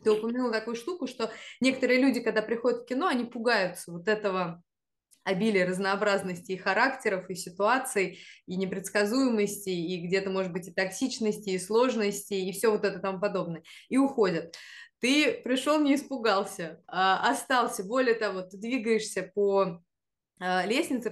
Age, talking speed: 20-39, 145 wpm